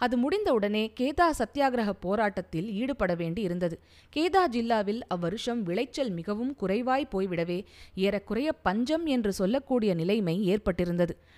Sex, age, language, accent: female, 20-39, Tamil, native